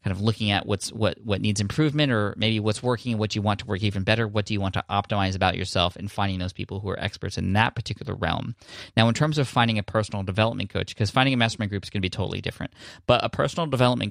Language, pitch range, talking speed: English, 95-115 Hz, 270 wpm